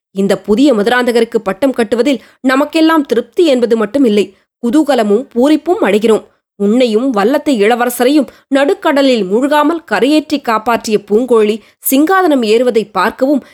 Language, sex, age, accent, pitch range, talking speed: Tamil, female, 20-39, native, 210-280 Hz, 105 wpm